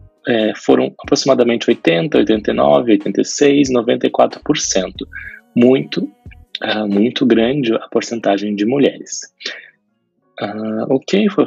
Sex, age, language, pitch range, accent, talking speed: male, 20-39, Portuguese, 100-140 Hz, Brazilian, 80 wpm